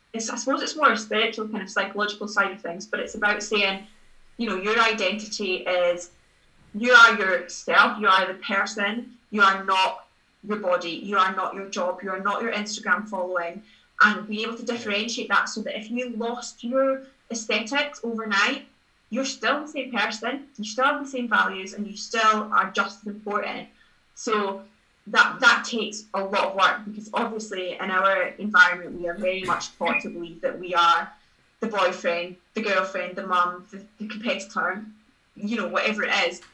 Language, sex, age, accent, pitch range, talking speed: English, female, 20-39, British, 190-230 Hz, 185 wpm